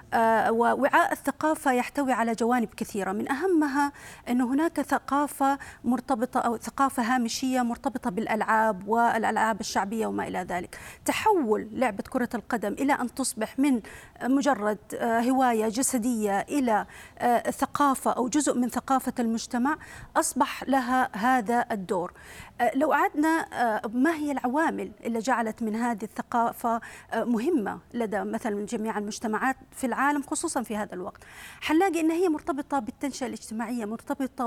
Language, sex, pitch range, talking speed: Arabic, female, 230-275 Hz, 125 wpm